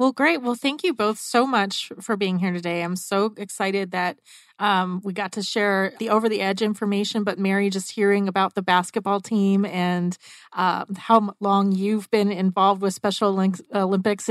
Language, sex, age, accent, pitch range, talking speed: English, female, 30-49, American, 180-215 Hz, 175 wpm